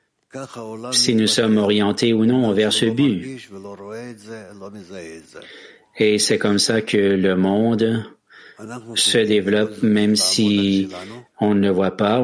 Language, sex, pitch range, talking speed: English, male, 100-115 Hz, 120 wpm